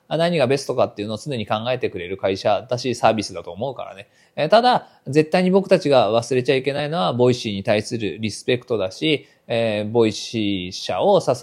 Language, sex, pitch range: Japanese, male, 115-185 Hz